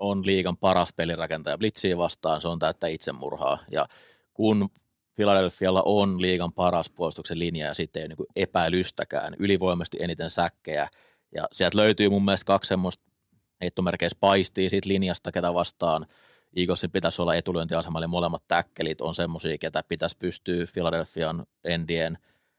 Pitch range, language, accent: 85-100 Hz, Finnish, native